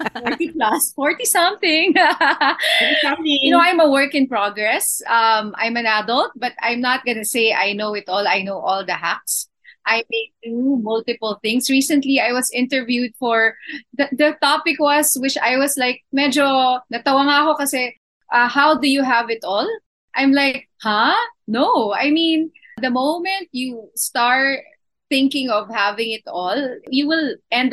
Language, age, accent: Filipino, 20-39, native